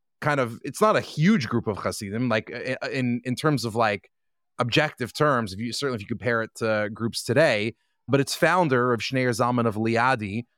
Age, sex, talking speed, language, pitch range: 30-49, male, 200 wpm, English, 110-135 Hz